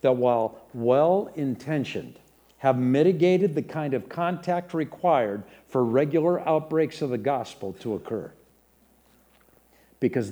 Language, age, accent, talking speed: English, 60-79, American, 110 wpm